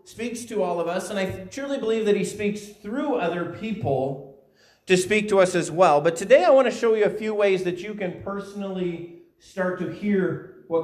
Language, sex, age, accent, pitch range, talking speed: English, male, 40-59, American, 160-205 Hz, 215 wpm